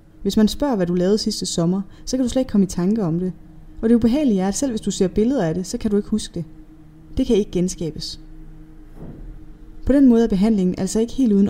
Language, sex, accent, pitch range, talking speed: Danish, female, native, 165-215 Hz, 255 wpm